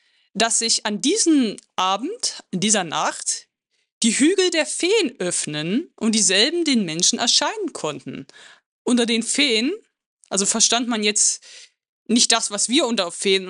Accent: German